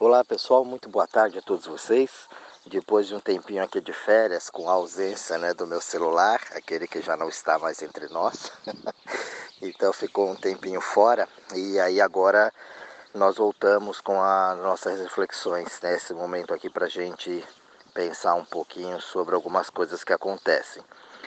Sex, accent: male, Brazilian